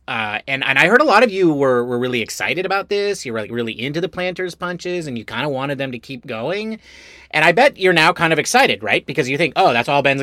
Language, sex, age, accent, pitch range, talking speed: English, male, 30-49, American, 110-175 Hz, 280 wpm